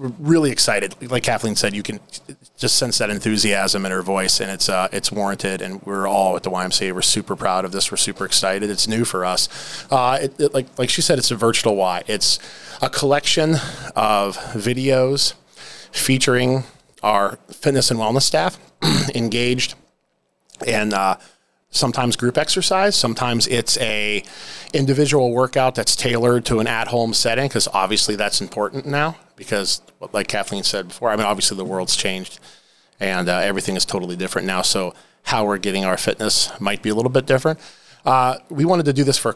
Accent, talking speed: American, 180 wpm